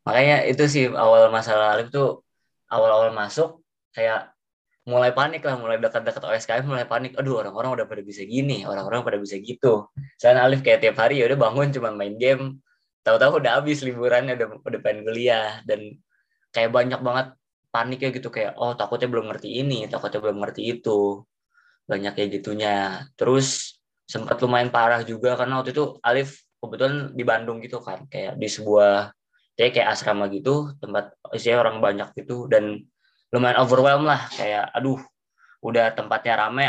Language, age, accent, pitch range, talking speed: Indonesian, 20-39, native, 105-135 Hz, 165 wpm